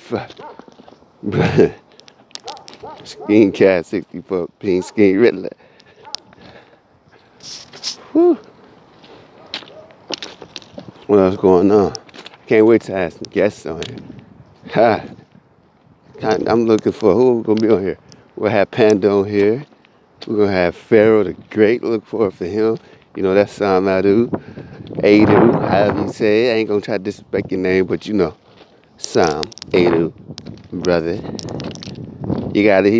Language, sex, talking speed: English, male, 135 wpm